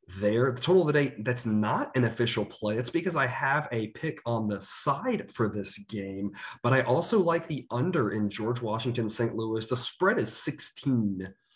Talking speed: 195 wpm